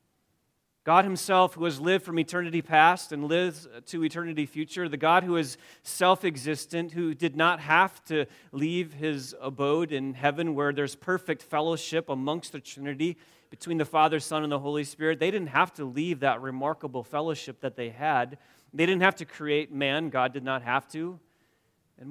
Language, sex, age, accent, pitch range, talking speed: English, male, 30-49, American, 140-165 Hz, 180 wpm